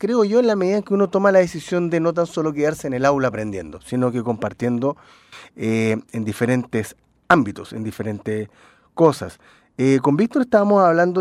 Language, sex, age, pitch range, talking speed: Spanish, male, 30-49, 120-170 Hz, 185 wpm